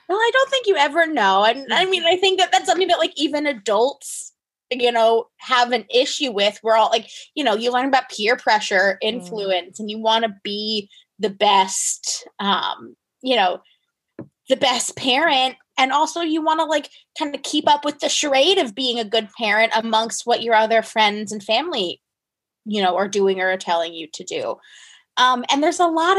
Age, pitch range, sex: 20-39, 200-285 Hz, female